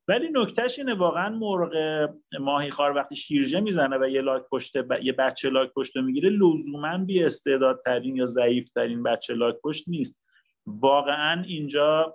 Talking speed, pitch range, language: 145 wpm, 125-175 Hz, Persian